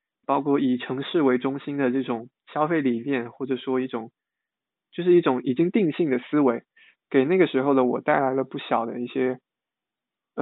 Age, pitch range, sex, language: 20-39, 130-165 Hz, male, Chinese